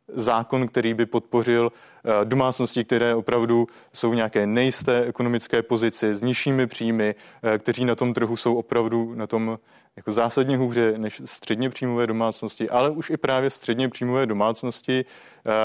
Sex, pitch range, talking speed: male, 115-130 Hz, 140 wpm